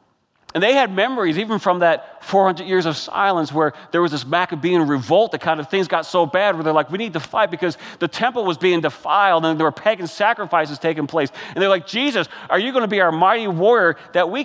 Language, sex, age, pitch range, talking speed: English, male, 40-59, 130-180 Hz, 240 wpm